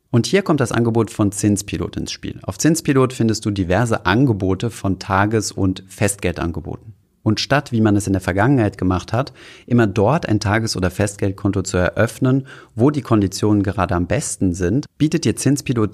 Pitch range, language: 95-115 Hz, German